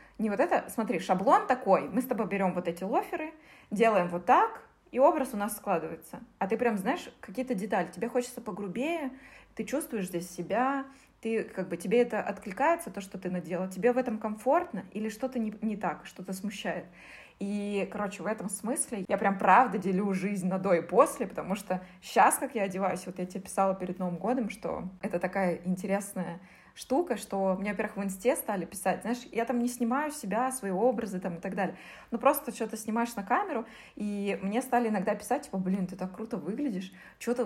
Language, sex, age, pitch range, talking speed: Russian, female, 20-39, 185-240 Hz, 190 wpm